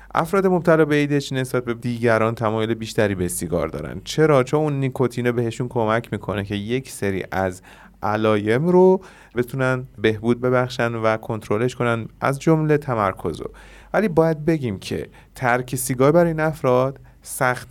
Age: 30-49